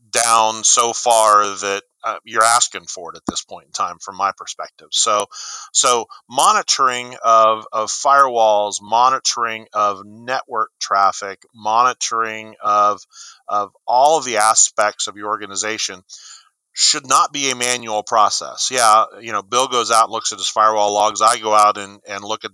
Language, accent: English, American